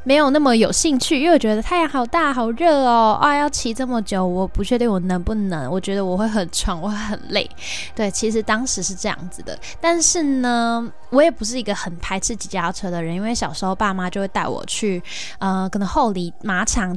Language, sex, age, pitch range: Chinese, female, 10-29, 190-250 Hz